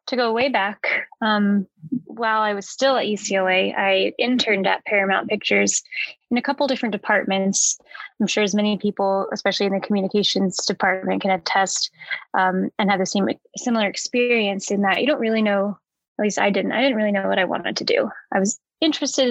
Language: English